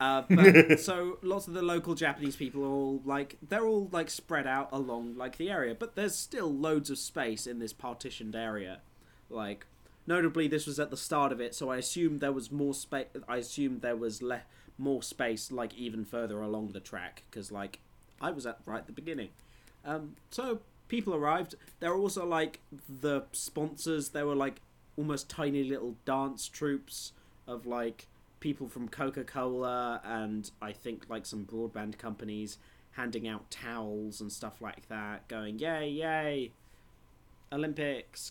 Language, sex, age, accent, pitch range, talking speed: English, male, 20-39, British, 115-155 Hz, 170 wpm